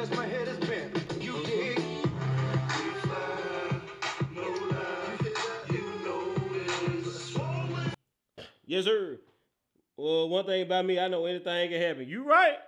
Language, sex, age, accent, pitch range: English, male, 30-49, American, 140-205 Hz